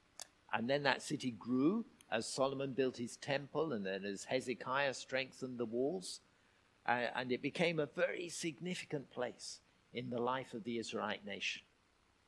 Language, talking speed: English, 155 wpm